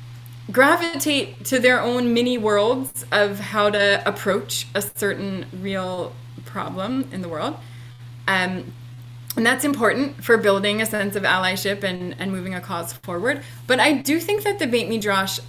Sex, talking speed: female, 160 wpm